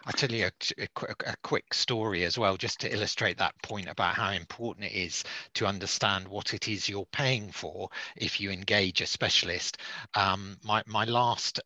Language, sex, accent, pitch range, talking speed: English, male, British, 95-110 Hz, 185 wpm